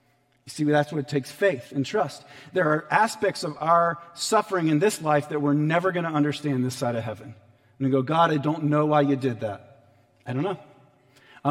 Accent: American